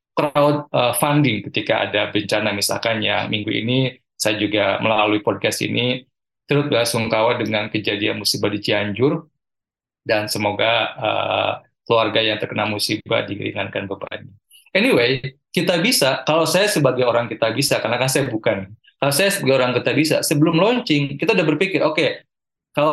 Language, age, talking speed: Indonesian, 20-39, 145 wpm